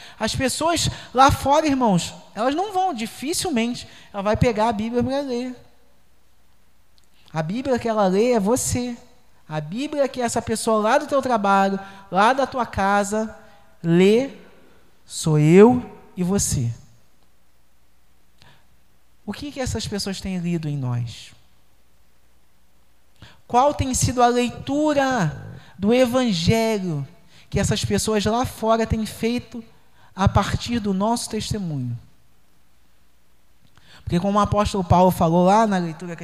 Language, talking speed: Portuguese, 130 wpm